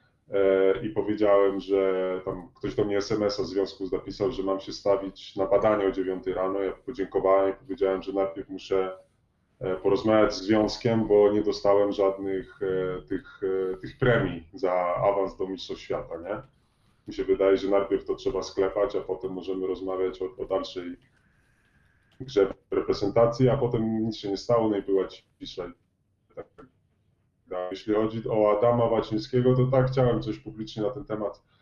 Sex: male